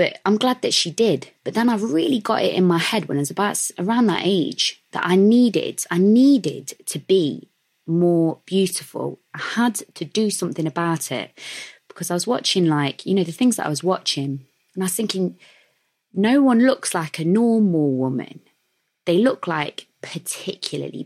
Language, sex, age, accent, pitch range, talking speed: English, female, 20-39, British, 145-195 Hz, 190 wpm